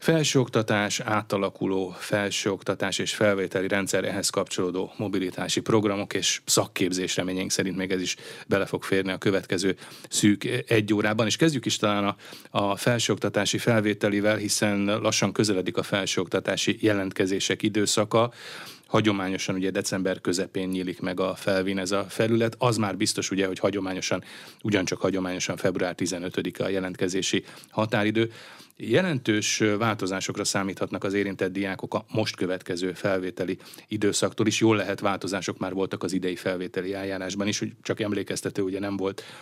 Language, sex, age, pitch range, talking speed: Hungarian, male, 30-49, 95-105 Hz, 140 wpm